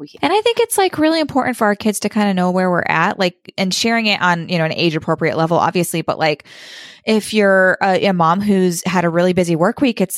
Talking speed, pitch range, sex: 260 wpm, 170-210 Hz, female